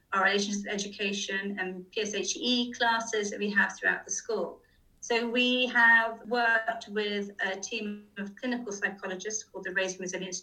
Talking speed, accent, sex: 150 wpm, British, female